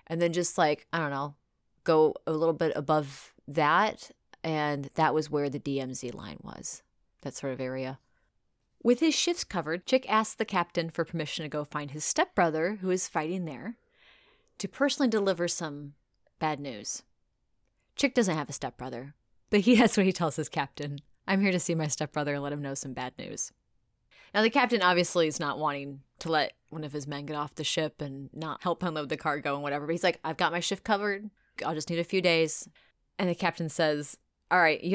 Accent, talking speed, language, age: American, 210 wpm, English, 30-49